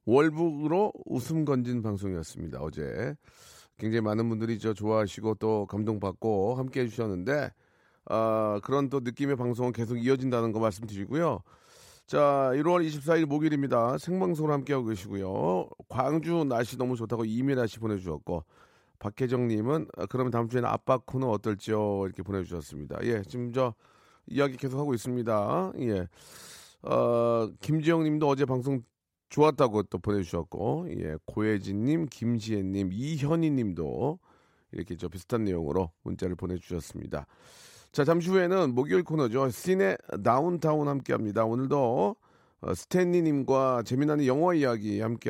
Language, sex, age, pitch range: Korean, male, 40-59, 105-145 Hz